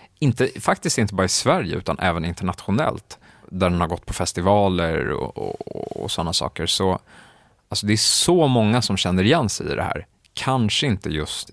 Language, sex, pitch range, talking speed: Swedish, male, 90-110 Hz, 185 wpm